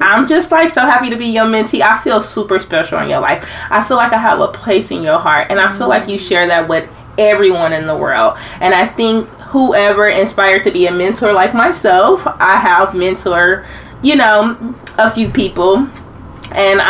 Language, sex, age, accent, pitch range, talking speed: English, female, 20-39, American, 175-220 Hz, 205 wpm